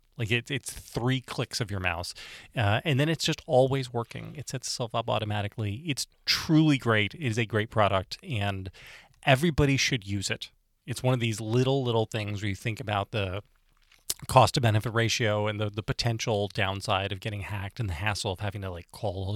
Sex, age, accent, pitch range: male, 30-49, American, 105-135 Hz